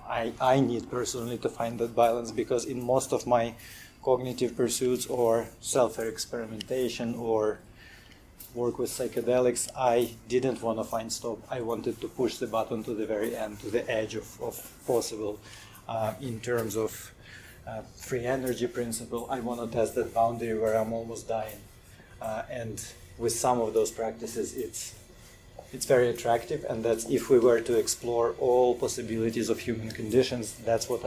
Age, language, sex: 30-49, English, male